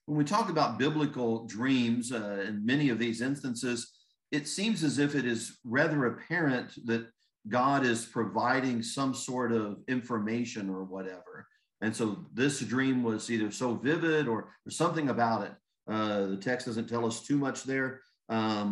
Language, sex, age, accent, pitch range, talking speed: English, male, 40-59, American, 110-130 Hz, 170 wpm